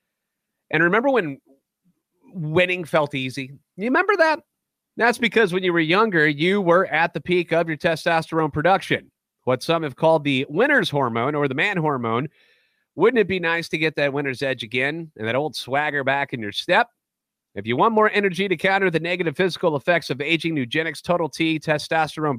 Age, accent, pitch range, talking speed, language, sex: 30-49, American, 145-180 Hz, 190 wpm, English, male